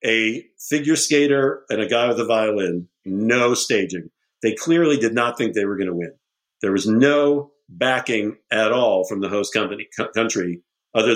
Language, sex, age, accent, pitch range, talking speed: English, male, 50-69, American, 110-145 Hz, 175 wpm